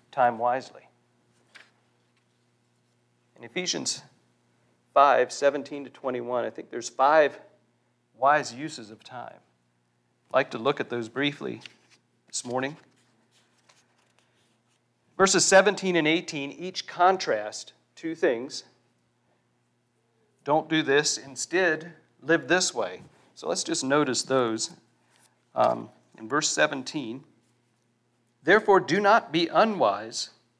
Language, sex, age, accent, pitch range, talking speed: English, male, 40-59, American, 120-170 Hz, 105 wpm